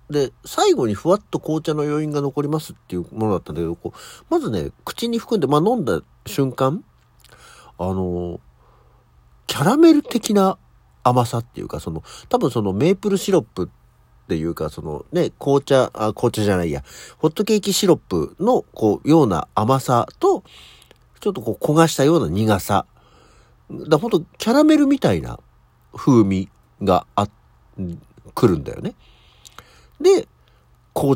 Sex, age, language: male, 50-69, Japanese